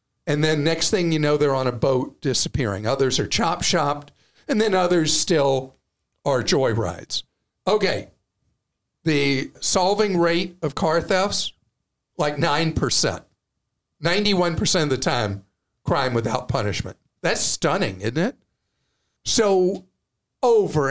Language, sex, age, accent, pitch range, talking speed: English, male, 50-69, American, 140-195 Hz, 125 wpm